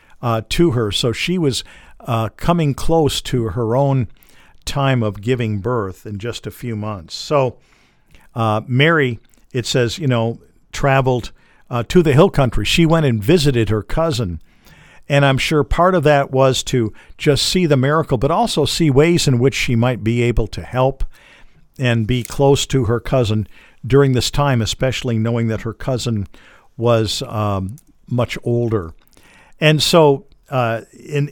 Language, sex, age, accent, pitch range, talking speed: English, male, 50-69, American, 115-150 Hz, 165 wpm